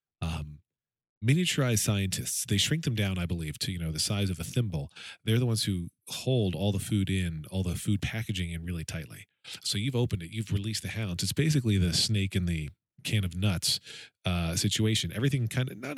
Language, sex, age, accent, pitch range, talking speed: English, male, 40-59, American, 95-120 Hz, 210 wpm